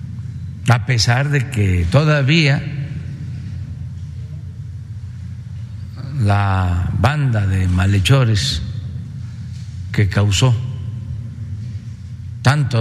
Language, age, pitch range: Spanish, 60-79, 100-130 Hz